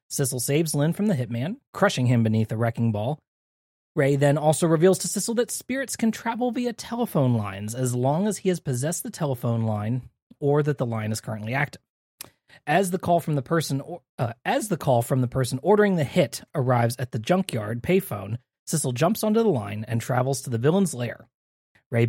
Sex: male